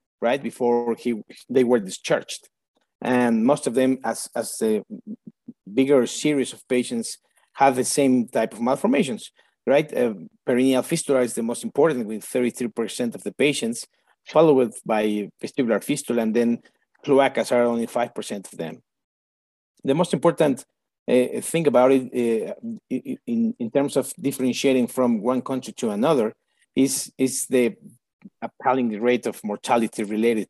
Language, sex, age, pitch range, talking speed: English, male, 50-69, 120-150 Hz, 150 wpm